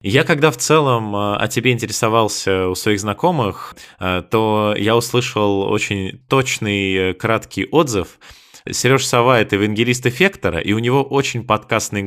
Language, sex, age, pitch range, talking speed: Russian, male, 20-39, 100-120 Hz, 140 wpm